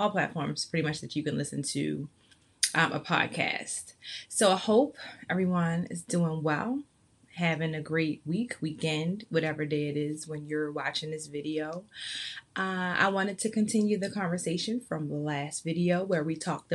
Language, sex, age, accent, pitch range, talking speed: English, female, 20-39, American, 155-180 Hz, 165 wpm